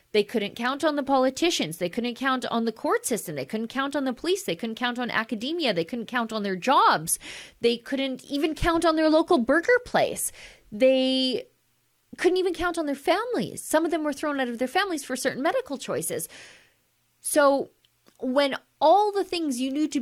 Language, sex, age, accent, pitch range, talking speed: English, female, 30-49, American, 210-290 Hz, 200 wpm